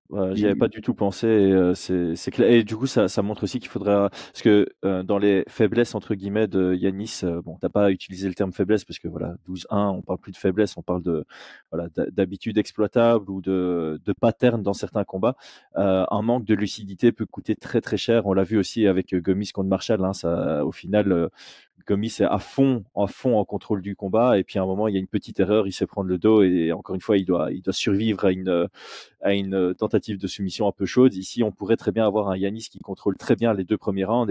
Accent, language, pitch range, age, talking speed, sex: French, French, 95-115 Hz, 20-39, 255 wpm, male